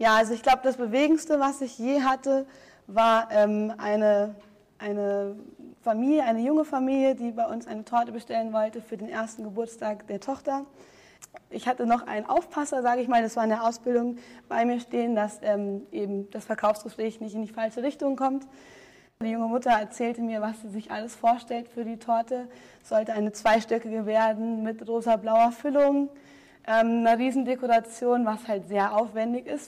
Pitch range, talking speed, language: 215-245 Hz, 175 wpm, German